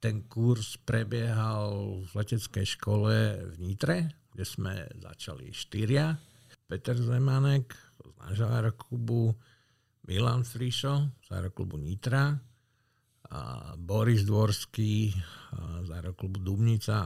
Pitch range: 100-125 Hz